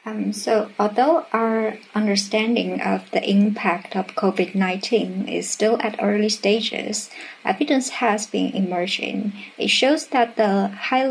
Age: 50-69